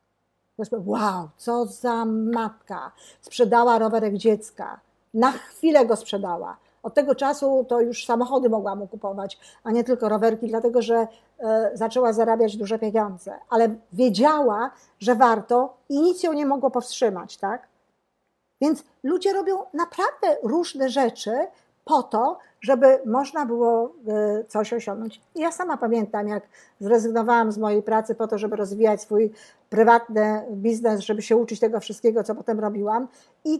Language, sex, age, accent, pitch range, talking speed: Polish, female, 50-69, native, 220-265 Hz, 140 wpm